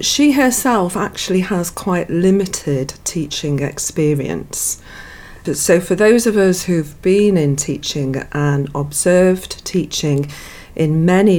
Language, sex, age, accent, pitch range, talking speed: English, female, 40-59, British, 145-195 Hz, 115 wpm